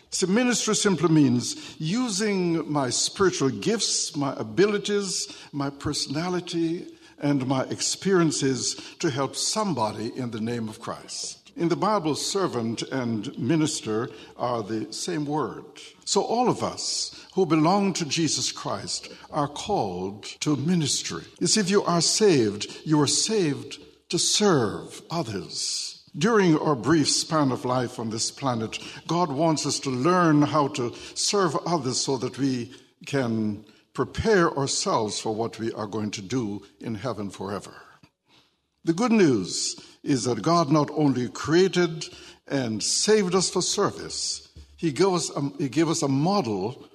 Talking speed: 140 wpm